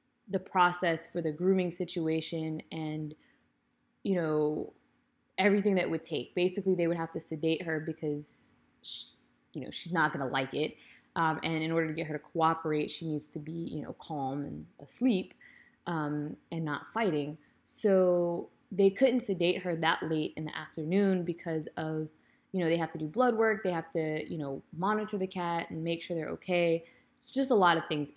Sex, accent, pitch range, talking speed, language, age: female, American, 160-190 Hz, 190 wpm, English, 20-39